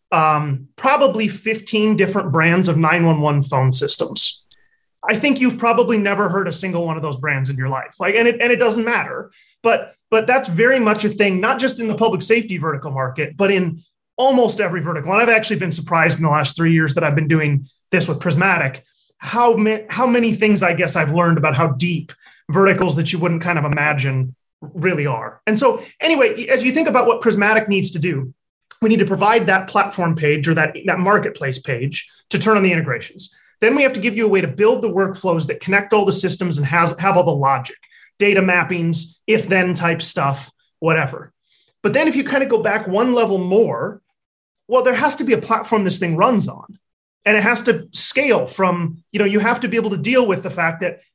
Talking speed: 220 wpm